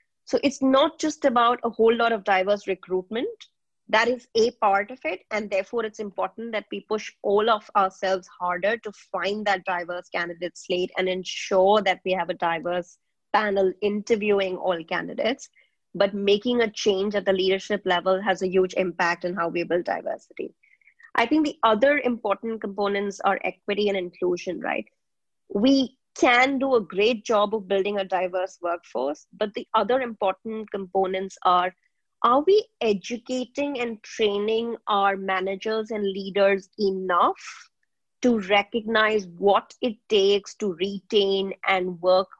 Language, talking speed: English, 155 wpm